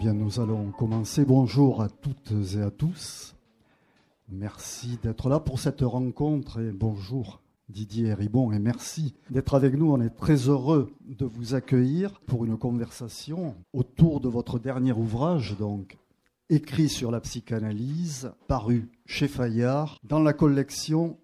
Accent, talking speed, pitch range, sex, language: French, 145 wpm, 110-140 Hz, male, French